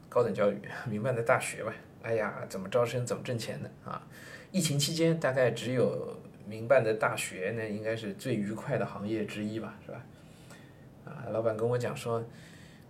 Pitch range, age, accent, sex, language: 115-160 Hz, 20-39, native, male, Chinese